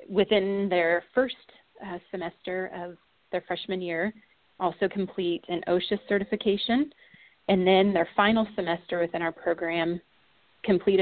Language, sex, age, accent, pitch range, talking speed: English, female, 30-49, American, 170-195 Hz, 125 wpm